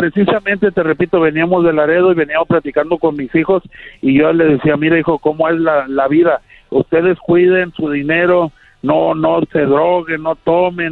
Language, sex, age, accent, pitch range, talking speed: Spanish, male, 50-69, Mexican, 155-185 Hz, 180 wpm